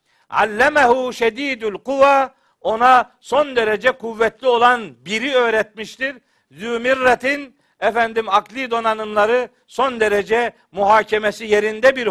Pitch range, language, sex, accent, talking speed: 210-250 Hz, Turkish, male, native, 85 wpm